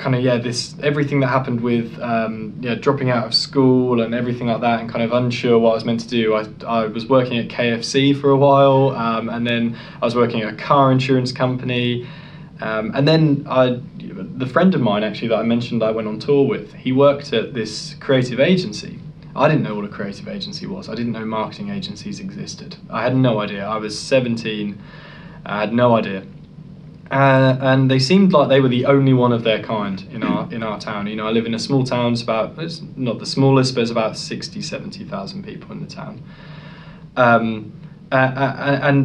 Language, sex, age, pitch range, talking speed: English, male, 20-39, 115-155 Hz, 215 wpm